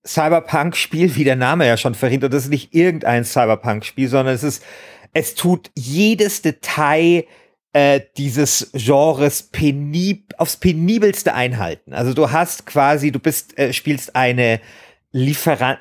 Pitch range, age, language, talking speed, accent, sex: 125-160 Hz, 40-59, German, 135 wpm, German, male